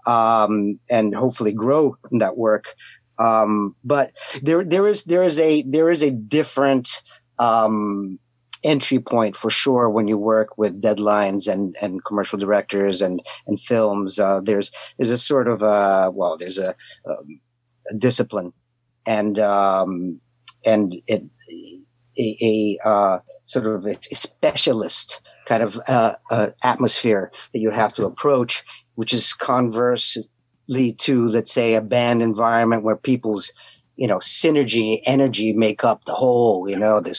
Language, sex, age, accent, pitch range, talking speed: English, male, 50-69, American, 110-130 Hz, 150 wpm